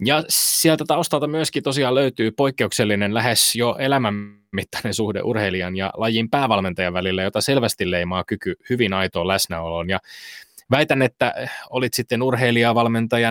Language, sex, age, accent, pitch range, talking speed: Finnish, male, 20-39, native, 100-120 Hz, 130 wpm